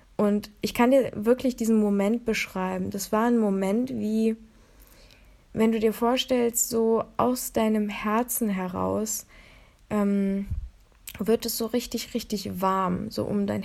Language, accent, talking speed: German, German, 140 wpm